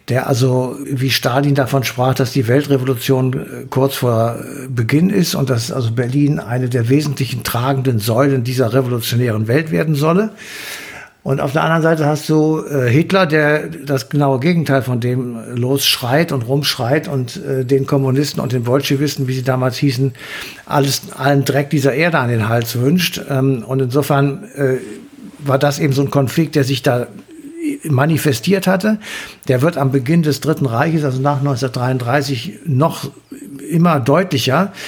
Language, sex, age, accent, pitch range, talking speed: German, male, 60-79, German, 135-160 Hz, 160 wpm